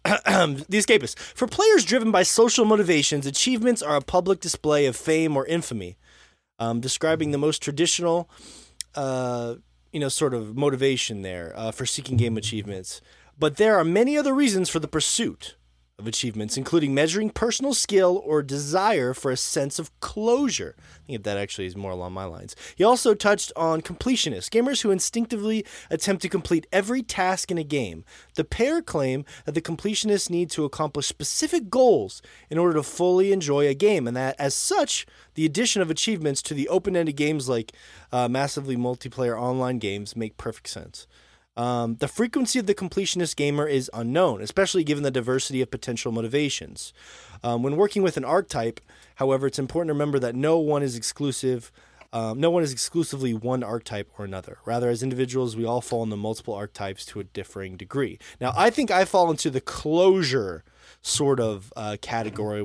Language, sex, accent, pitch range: English, male, American, 120-175 Hz